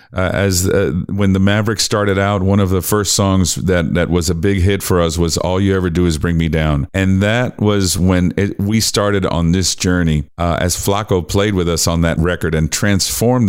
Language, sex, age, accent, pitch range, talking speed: English, male, 40-59, American, 85-100 Hz, 225 wpm